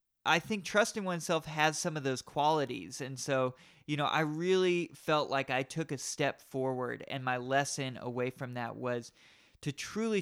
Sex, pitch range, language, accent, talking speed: male, 130-160 Hz, English, American, 180 wpm